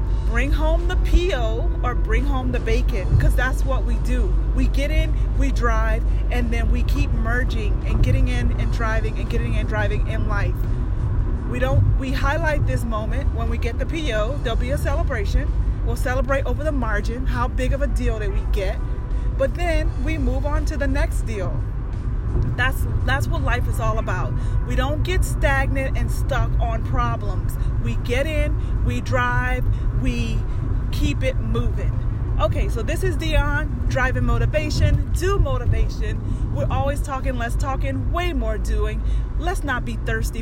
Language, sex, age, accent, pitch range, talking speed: English, female, 30-49, American, 100-115 Hz, 175 wpm